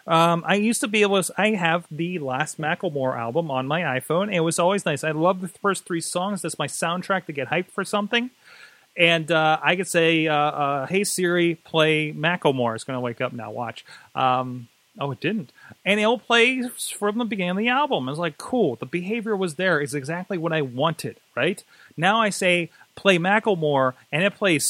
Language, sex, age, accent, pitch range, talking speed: English, male, 30-49, American, 140-190 Hz, 215 wpm